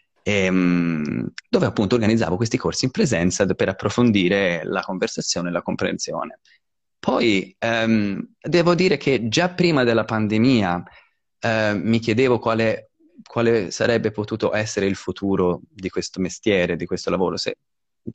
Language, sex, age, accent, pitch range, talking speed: Italian, male, 20-39, native, 95-125 Hz, 130 wpm